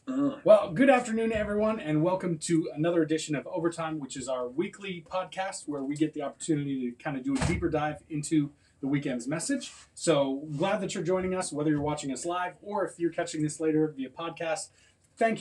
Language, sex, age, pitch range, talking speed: English, male, 30-49, 150-185 Hz, 205 wpm